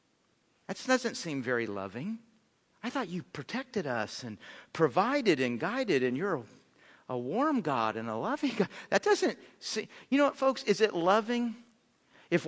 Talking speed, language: 165 wpm, English